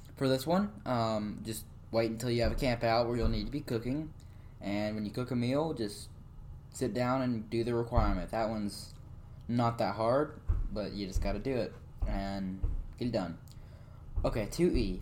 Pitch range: 105-135 Hz